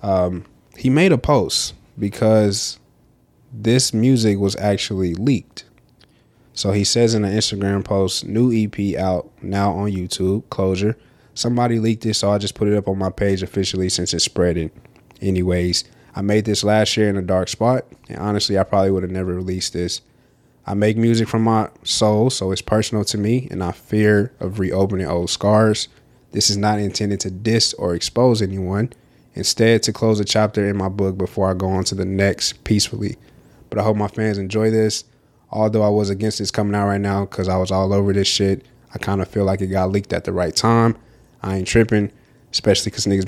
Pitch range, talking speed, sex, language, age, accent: 95-115 Hz, 200 wpm, male, English, 20-39, American